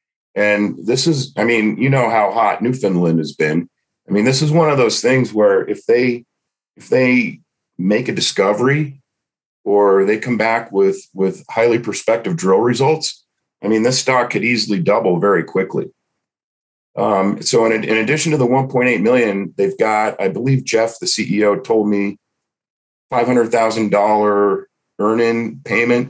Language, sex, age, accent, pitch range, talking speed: English, male, 40-59, American, 100-125 Hz, 155 wpm